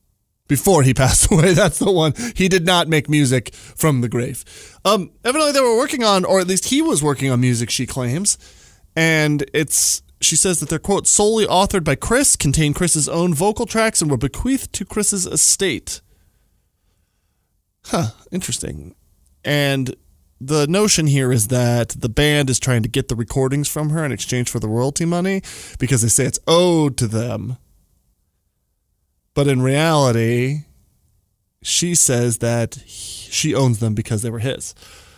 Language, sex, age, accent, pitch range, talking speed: English, male, 20-39, American, 100-155 Hz, 165 wpm